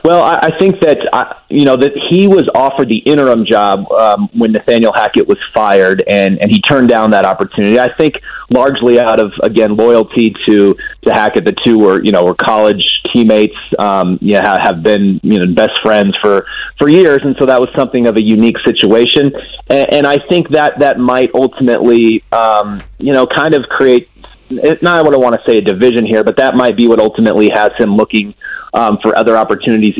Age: 30-49